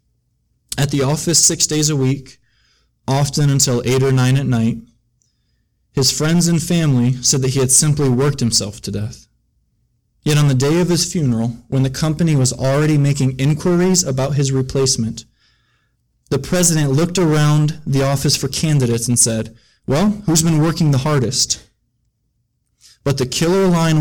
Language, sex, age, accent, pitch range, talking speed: English, male, 20-39, American, 115-145 Hz, 160 wpm